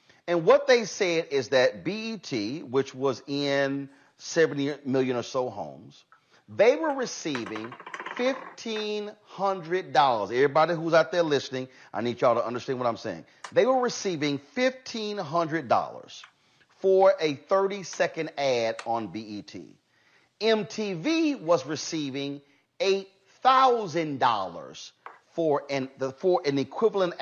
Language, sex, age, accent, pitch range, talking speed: English, male, 40-59, American, 135-220 Hz, 110 wpm